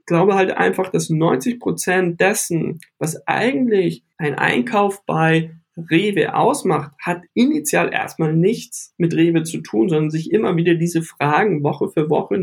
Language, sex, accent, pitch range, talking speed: German, male, German, 155-180 Hz, 150 wpm